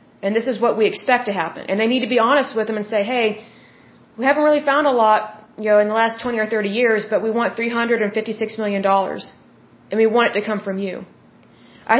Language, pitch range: Russian, 220-270 Hz